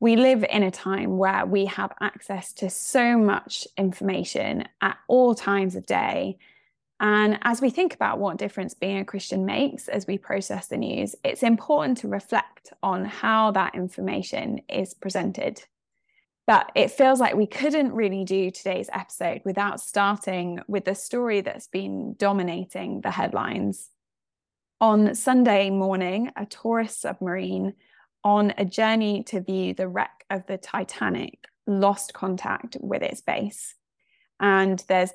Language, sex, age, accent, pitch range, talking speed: English, female, 10-29, British, 190-225 Hz, 150 wpm